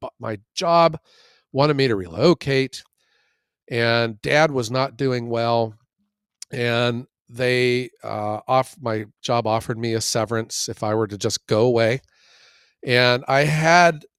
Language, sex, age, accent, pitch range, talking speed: English, male, 50-69, American, 110-135 Hz, 135 wpm